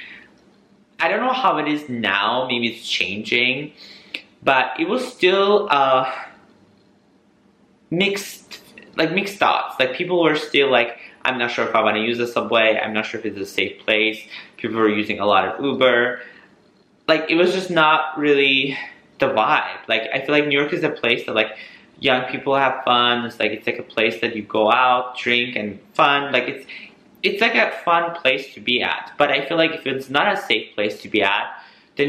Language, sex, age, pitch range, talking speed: English, male, 20-39, 110-150 Hz, 205 wpm